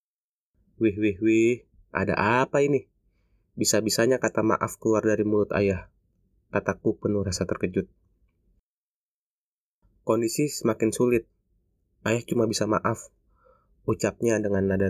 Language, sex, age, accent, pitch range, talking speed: Indonesian, male, 20-39, native, 100-115 Hz, 110 wpm